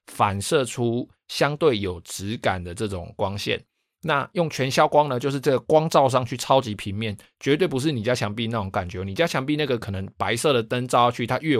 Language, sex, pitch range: Chinese, male, 100-150 Hz